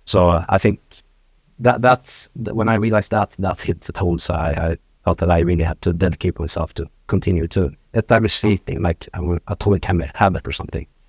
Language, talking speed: English, 210 wpm